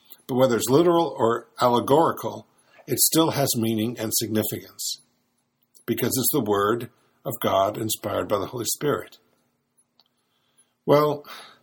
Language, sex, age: English, male, 50-69